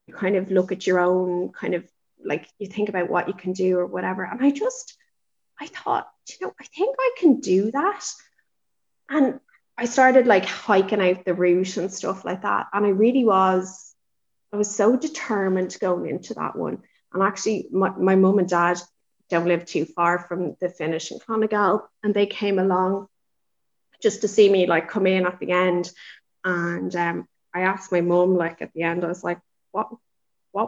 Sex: female